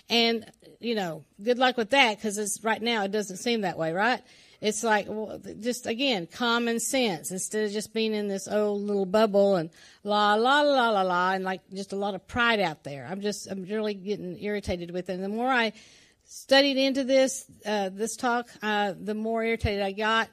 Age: 50-69